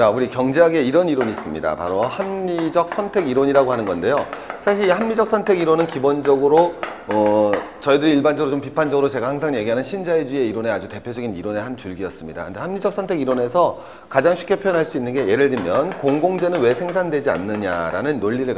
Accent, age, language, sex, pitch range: native, 40-59, Korean, male, 135-180 Hz